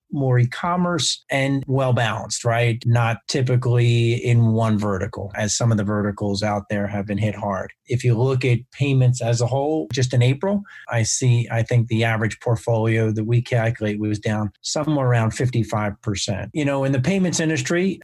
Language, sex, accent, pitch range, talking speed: English, male, American, 110-130 Hz, 185 wpm